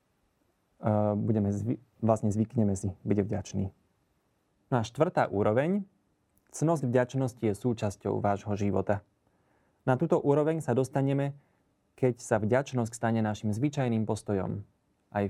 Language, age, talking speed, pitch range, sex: Slovak, 30-49, 110 wpm, 100-130 Hz, male